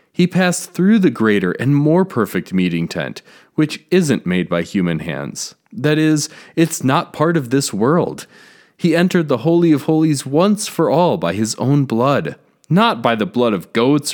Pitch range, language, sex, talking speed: 110-160 Hz, English, male, 185 wpm